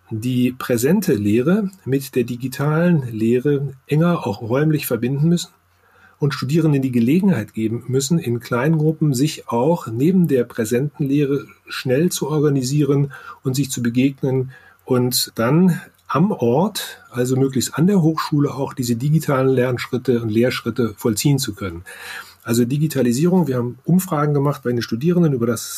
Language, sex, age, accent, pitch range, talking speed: German, male, 40-59, German, 120-155 Hz, 145 wpm